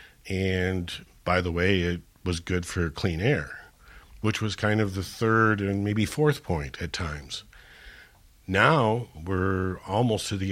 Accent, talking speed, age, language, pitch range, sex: American, 155 wpm, 50-69, English, 85-105 Hz, male